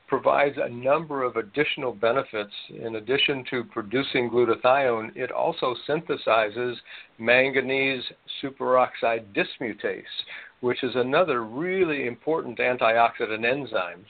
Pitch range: 120-140 Hz